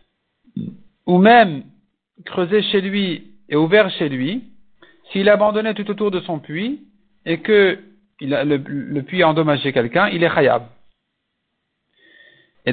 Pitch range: 160-210 Hz